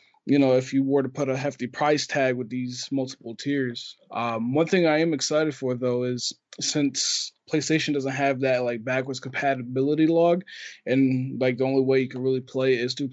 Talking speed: 205 wpm